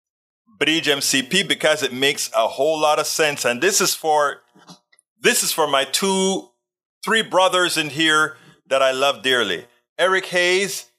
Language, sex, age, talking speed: English, male, 30-49, 160 wpm